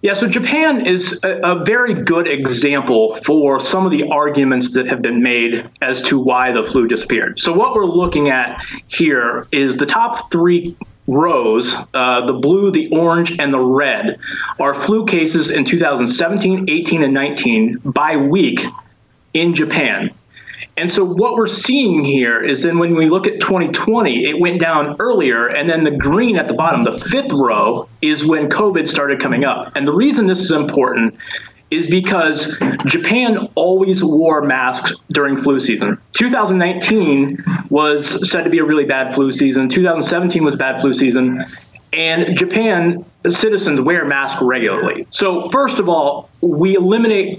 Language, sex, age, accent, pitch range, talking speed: English, male, 30-49, American, 140-185 Hz, 165 wpm